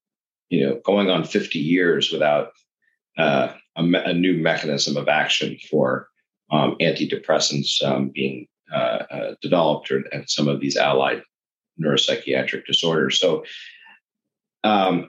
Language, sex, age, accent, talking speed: English, male, 40-59, American, 130 wpm